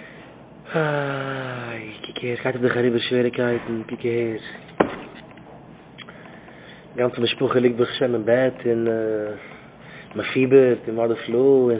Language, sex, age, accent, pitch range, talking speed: English, male, 20-39, Dutch, 125-140 Hz, 175 wpm